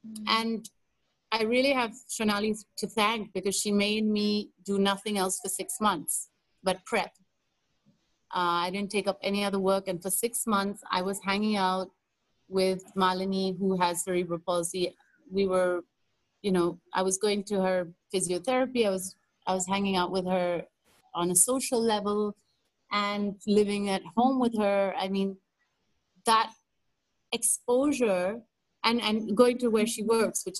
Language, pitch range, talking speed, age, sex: English, 185-215 Hz, 160 wpm, 30-49, female